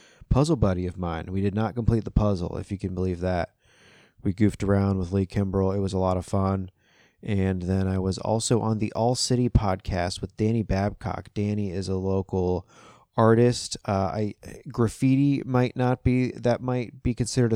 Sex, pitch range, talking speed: male, 95-110 Hz, 190 wpm